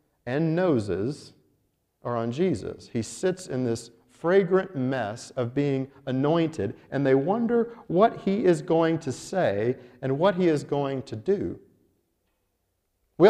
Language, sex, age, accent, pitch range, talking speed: English, male, 50-69, American, 120-185 Hz, 140 wpm